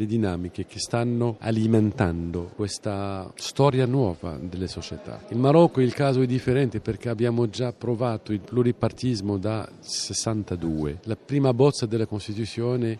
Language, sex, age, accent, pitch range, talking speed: Italian, male, 50-69, native, 100-125 Hz, 130 wpm